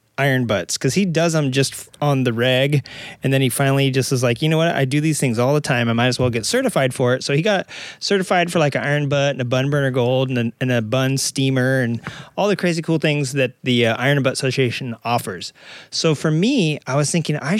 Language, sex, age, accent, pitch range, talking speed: English, male, 30-49, American, 120-150 Hz, 255 wpm